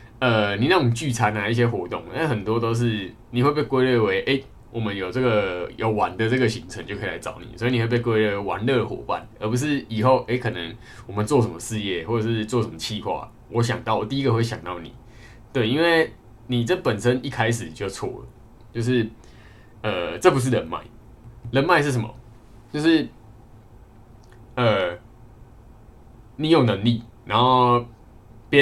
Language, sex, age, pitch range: Chinese, male, 20-39, 110-125 Hz